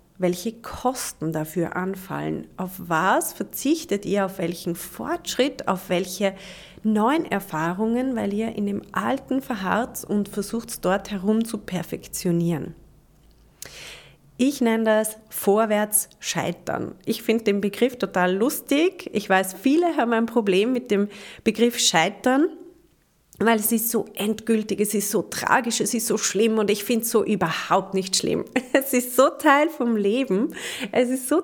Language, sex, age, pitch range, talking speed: German, female, 30-49, 195-255 Hz, 150 wpm